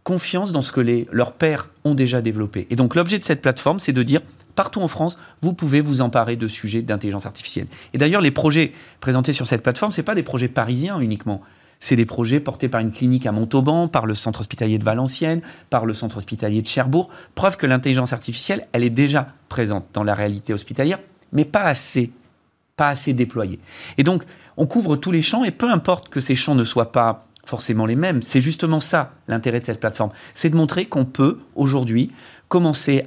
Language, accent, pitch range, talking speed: French, French, 115-150 Hz, 210 wpm